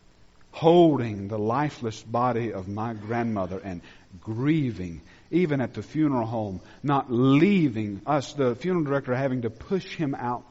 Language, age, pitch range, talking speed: English, 50-69, 95-155 Hz, 145 wpm